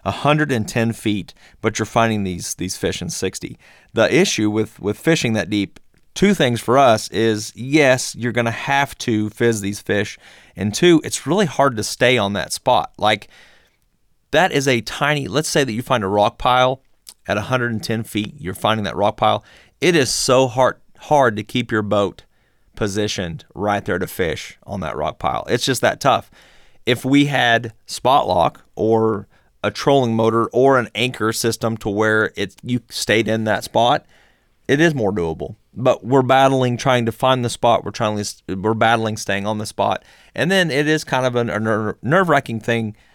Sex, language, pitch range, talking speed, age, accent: male, English, 105-130 Hz, 190 wpm, 30-49, American